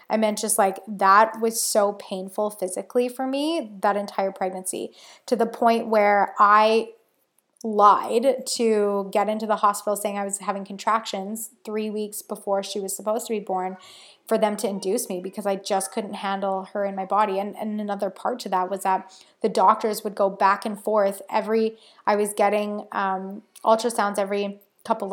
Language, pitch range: English, 195-225 Hz